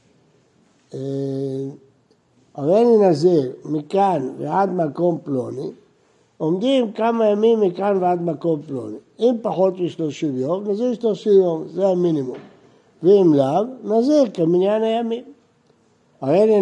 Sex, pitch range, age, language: male, 150-205 Hz, 60-79, Hebrew